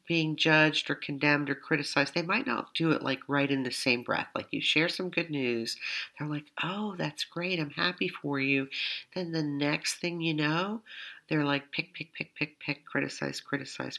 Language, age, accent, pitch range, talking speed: English, 50-69, American, 130-165 Hz, 200 wpm